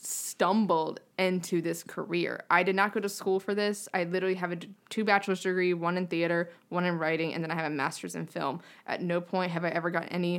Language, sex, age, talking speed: English, female, 20-39, 235 wpm